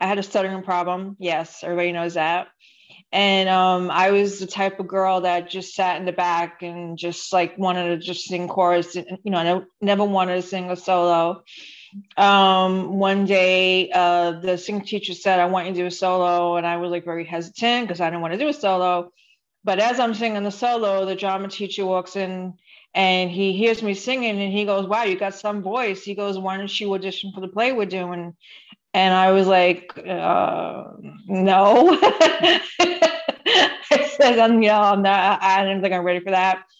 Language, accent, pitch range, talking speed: English, American, 180-205 Hz, 205 wpm